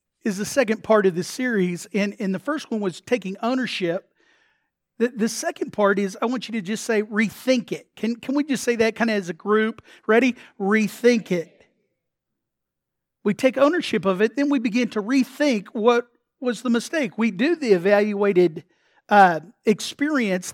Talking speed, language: 180 wpm, English